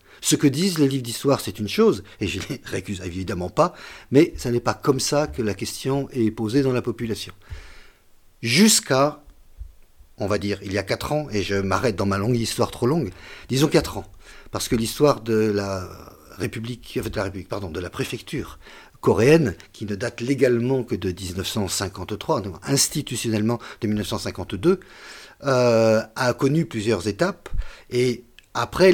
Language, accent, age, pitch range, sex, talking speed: French, French, 50-69, 105-135 Hz, male, 170 wpm